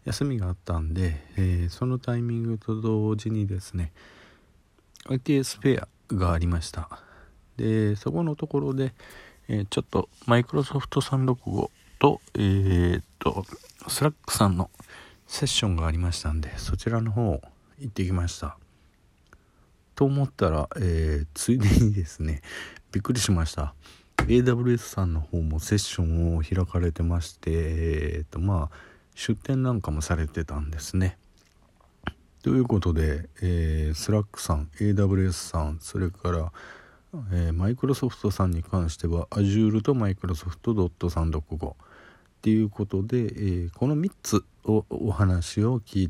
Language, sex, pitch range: Japanese, male, 80-110 Hz